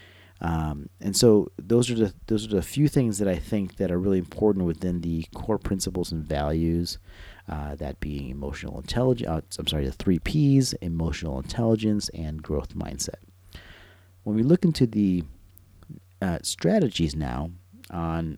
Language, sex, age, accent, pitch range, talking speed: English, male, 30-49, American, 80-95 Hz, 155 wpm